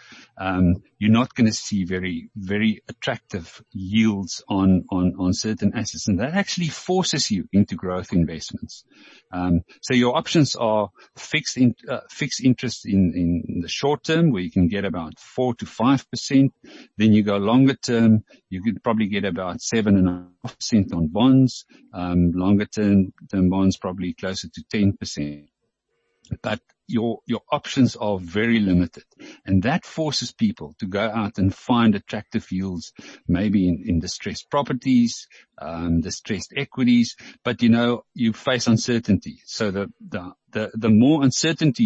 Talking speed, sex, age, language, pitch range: 160 wpm, male, 50-69, English, 95-120 Hz